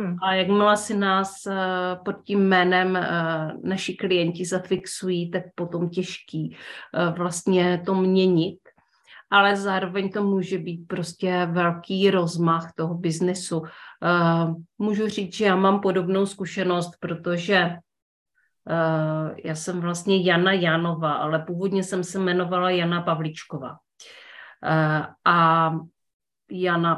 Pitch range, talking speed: 170-195 Hz, 105 wpm